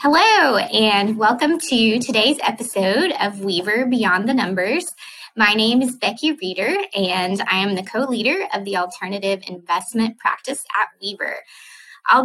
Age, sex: 20-39, female